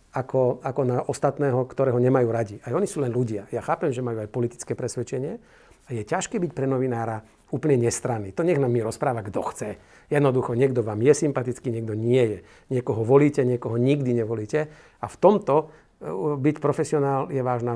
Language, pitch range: Slovak, 120-145 Hz